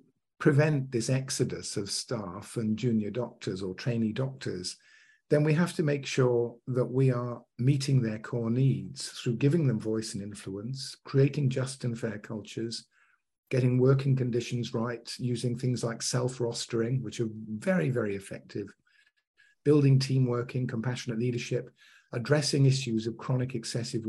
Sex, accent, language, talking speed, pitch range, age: male, British, English, 140 wpm, 110-135 Hz, 50-69